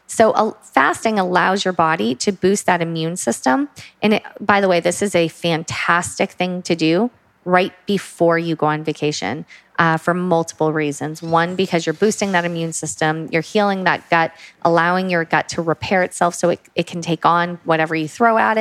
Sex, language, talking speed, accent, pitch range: female, English, 185 wpm, American, 160-195 Hz